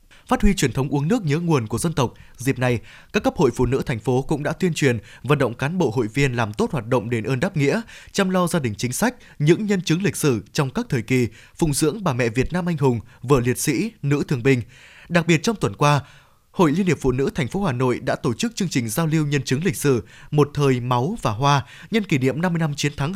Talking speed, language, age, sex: 270 wpm, Vietnamese, 20-39, male